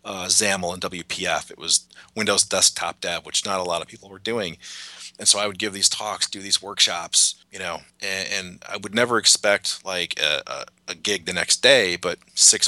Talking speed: 210 wpm